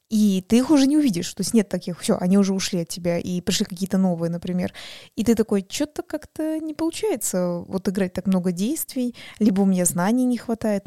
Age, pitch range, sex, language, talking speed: 20-39, 185-210 Hz, female, Russian, 215 wpm